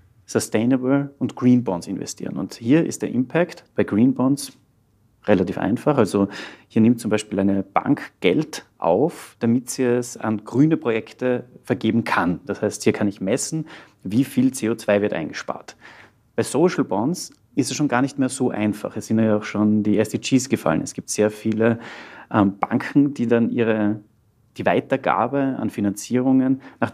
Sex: male